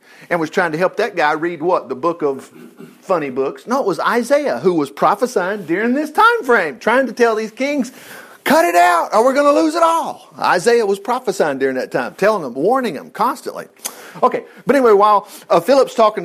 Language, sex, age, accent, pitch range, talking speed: English, male, 50-69, American, 200-290 Hz, 215 wpm